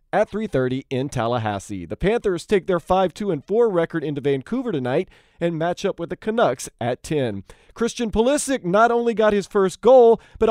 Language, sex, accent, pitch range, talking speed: English, male, American, 145-225 Hz, 170 wpm